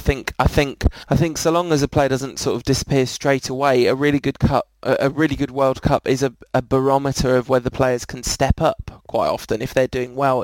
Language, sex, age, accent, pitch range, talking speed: English, male, 20-39, British, 125-145 Hz, 240 wpm